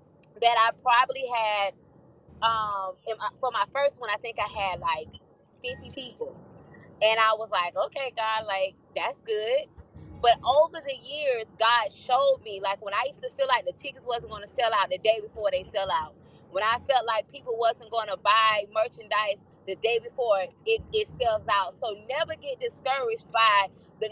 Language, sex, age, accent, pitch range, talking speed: English, female, 20-39, American, 235-305 Hz, 185 wpm